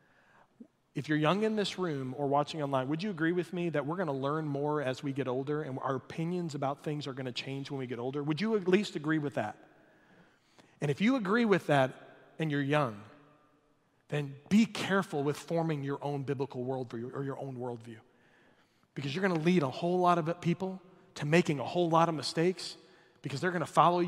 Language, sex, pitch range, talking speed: English, male, 145-195 Hz, 210 wpm